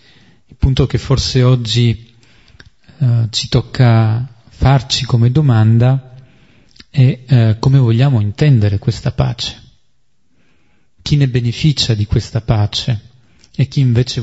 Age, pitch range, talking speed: 30-49, 115-130 Hz, 115 wpm